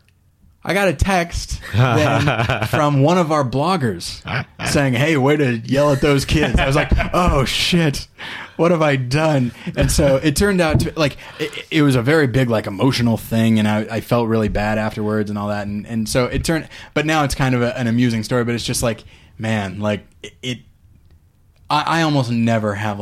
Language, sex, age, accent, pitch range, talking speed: English, male, 20-39, American, 105-140 Hz, 205 wpm